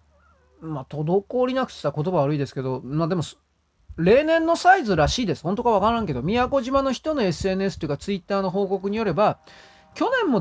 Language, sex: Japanese, male